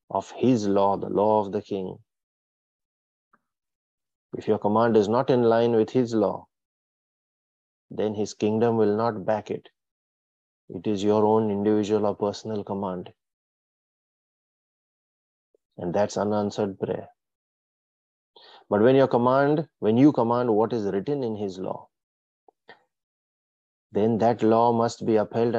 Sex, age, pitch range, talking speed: male, 30-49, 100-110 Hz, 130 wpm